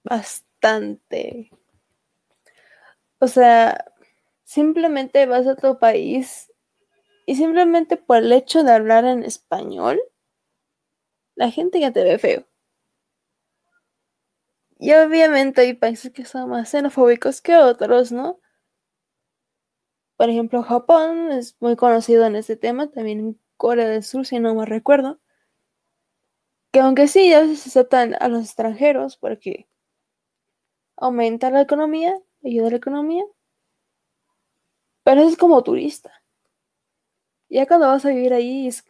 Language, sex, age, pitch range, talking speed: Spanish, female, 20-39, 240-310 Hz, 125 wpm